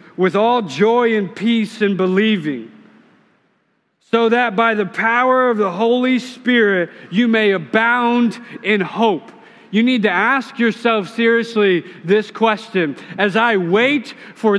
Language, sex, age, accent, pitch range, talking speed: English, male, 40-59, American, 215-265 Hz, 135 wpm